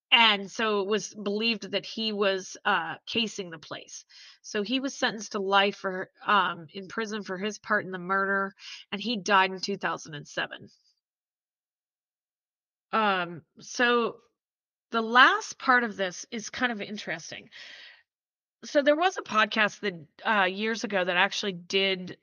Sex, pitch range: female, 195-240 Hz